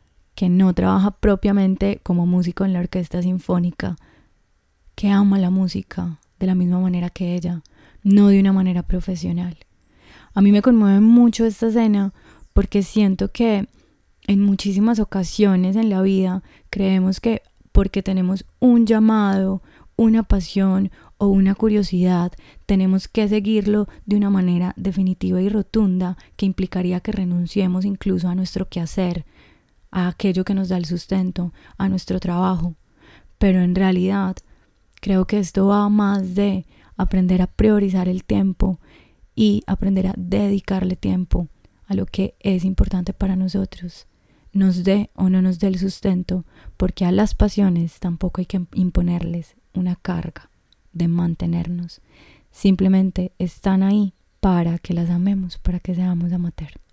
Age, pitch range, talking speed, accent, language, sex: 20-39, 180-200 Hz, 145 wpm, Colombian, Spanish, female